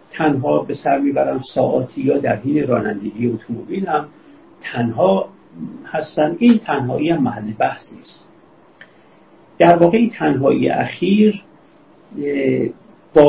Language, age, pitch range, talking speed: Persian, 50-69, 125-195 Hz, 100 wpm